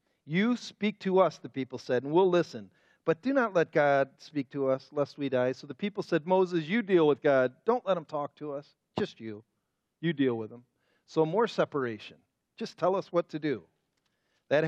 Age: 40-59